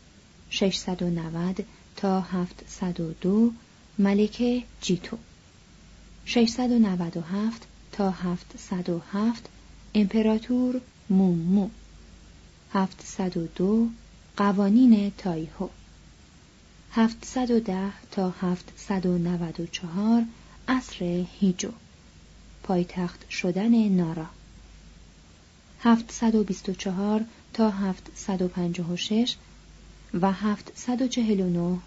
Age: 30-49